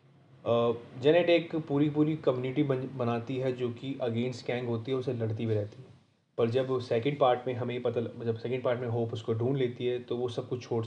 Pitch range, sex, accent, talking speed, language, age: 115-140 Hz, male, native, 220 wpm, Hindi, 20-39